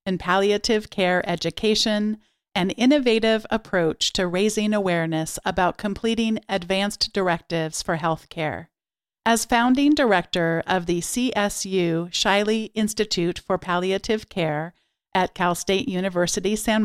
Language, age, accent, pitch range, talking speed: English, 50-69, American, 175-220 Hz, 120 wpm